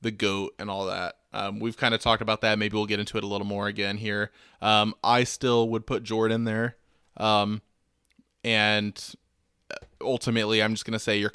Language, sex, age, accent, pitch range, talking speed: English, male, 20-39, American, 105-115 Hz, 195 wpm